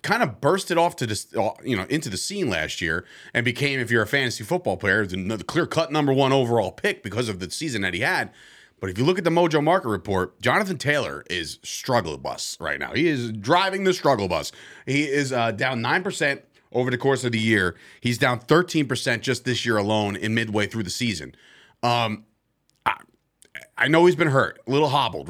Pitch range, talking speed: 115-155 Hz, 210 wpm